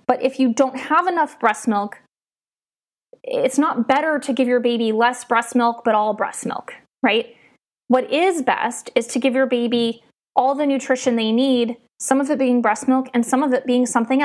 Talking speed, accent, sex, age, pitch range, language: 200 wpm, American, female, 20-39, 230-265 Hz, English